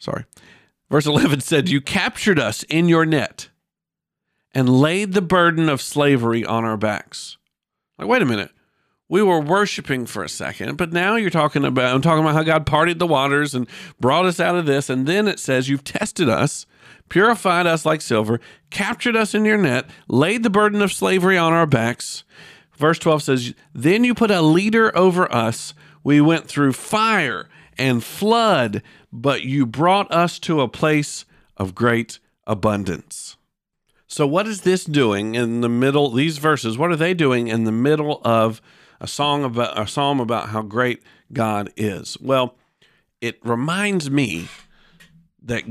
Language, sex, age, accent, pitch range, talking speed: English, male, 50-69, American, 120-175 Hz, 170 wpm